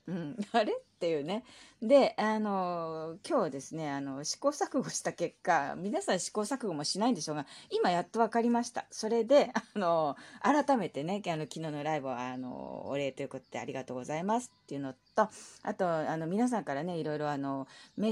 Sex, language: female, Japanese